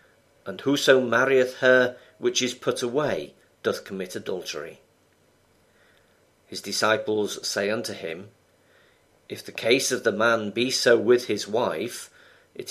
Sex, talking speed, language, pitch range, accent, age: male, 130 wpm, English, 110-140 Hz, British, 40-59